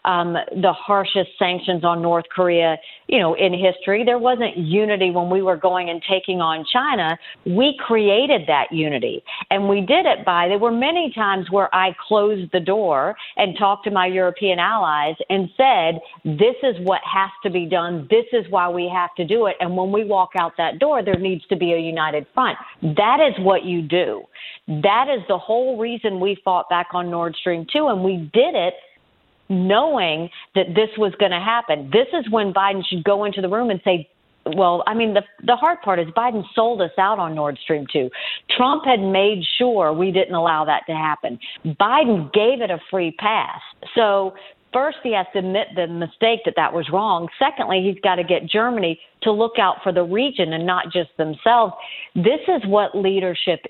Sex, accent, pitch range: female, American, 175-220 Hz